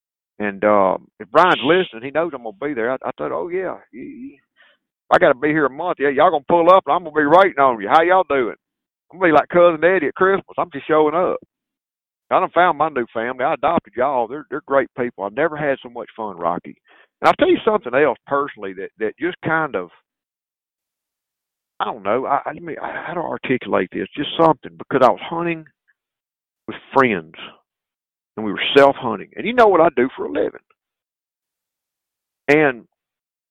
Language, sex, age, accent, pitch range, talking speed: English, male, 50-69, American, 125-170 Hz, 215 wpm